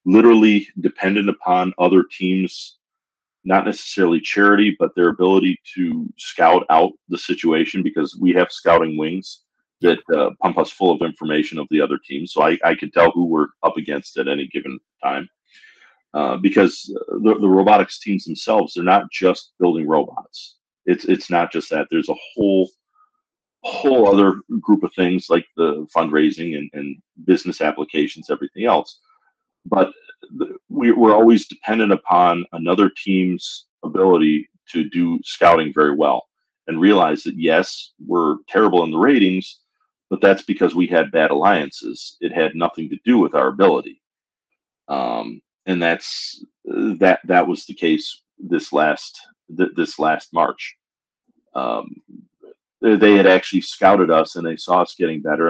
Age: 40-59